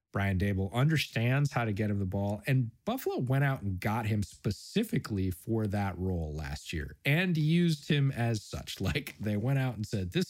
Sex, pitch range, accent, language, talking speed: male, 90-125 Hz, American, English, 200 wpm